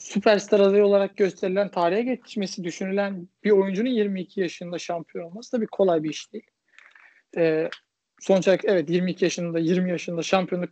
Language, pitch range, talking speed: Turkish, 175-225 Hz, 155 wpm